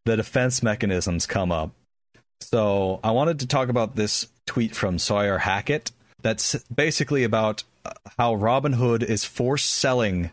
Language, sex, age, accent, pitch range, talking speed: English, male, 40-59, American, 105-135 Hz, 140 wpm